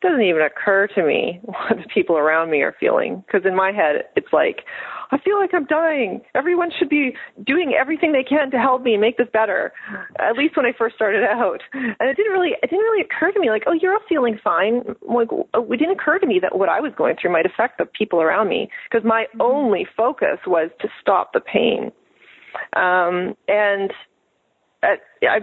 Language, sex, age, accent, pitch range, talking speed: English, female, 30-49, American, 185-310 Hz, 210 wpm